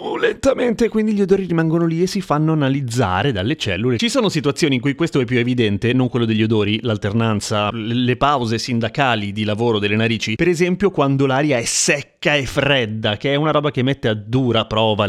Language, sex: Italian, male